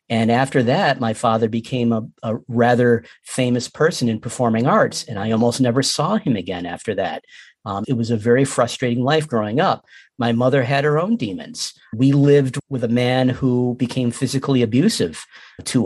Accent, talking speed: American, 180 wpm